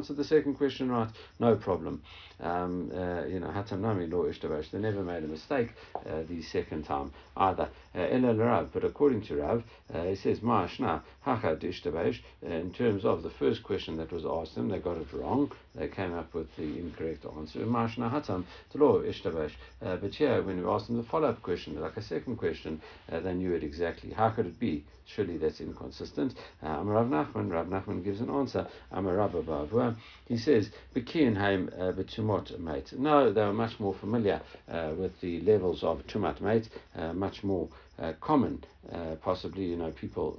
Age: 60-79